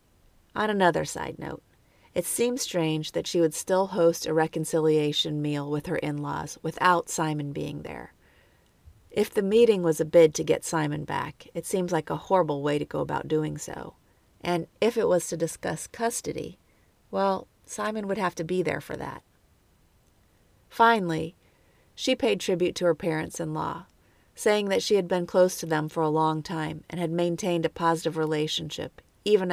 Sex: female